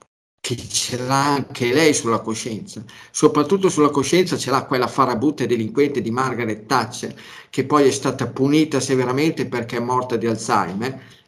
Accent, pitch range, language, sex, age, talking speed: native, 115-140 Hz, Italian, male, 50-69, 155 wpm